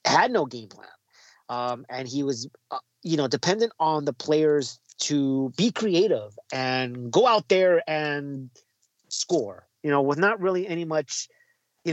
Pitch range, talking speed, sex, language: 130-180 Hz, 160 wpm, male, English